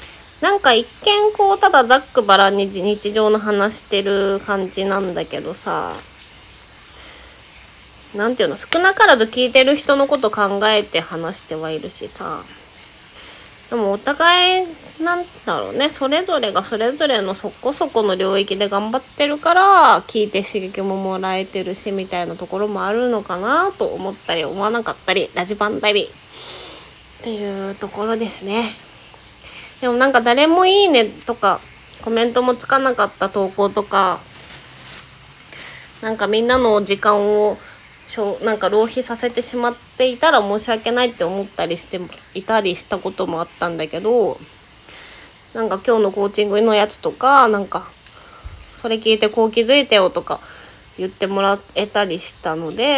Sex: female